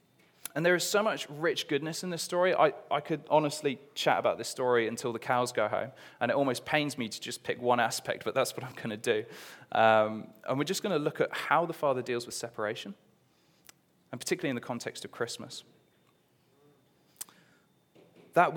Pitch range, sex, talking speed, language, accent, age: 115-145 Hz, male, 195 wpm, English, British, 20-39